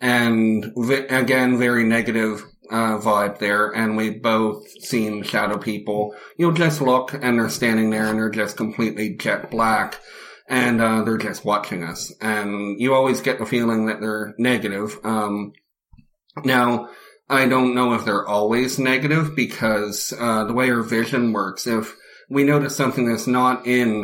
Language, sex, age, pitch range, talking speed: English, male, 30-49, 105-125 Hz, 160 wpm